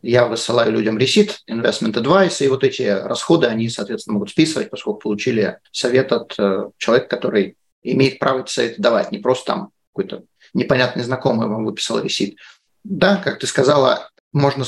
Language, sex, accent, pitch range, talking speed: Russian, male, native, 120-165 Hz, 155 wpm